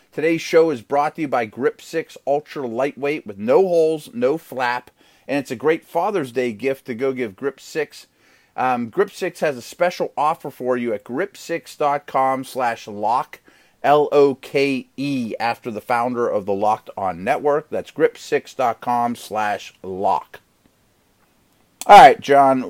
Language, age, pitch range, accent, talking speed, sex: English, 30-49, 125-175 Hz, American, 145 wpm, male